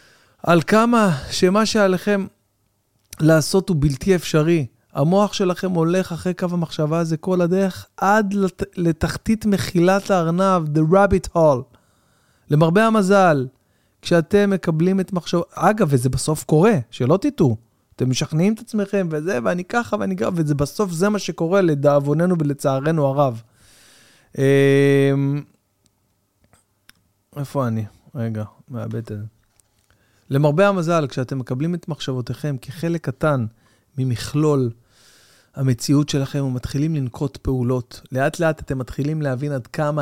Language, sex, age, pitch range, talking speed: Hebrew, male, 20-39, 120-180 Hz, 115 wpm